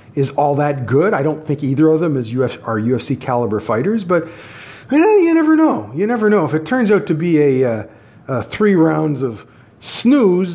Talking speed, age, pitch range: 210 wpm, 50-69, 110-155 Hz